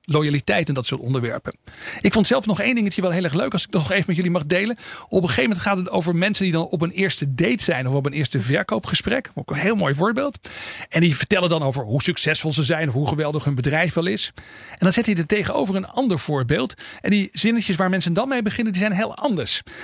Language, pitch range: Dutch, 160-205 Hz